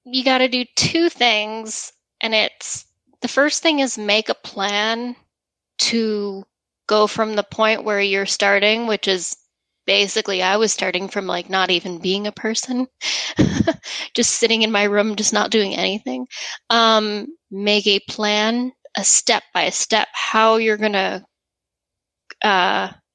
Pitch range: 195-235 Hz